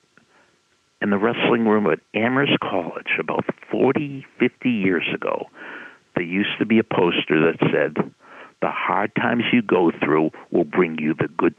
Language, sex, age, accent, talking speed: English, male, 60-79, American, 160 wpm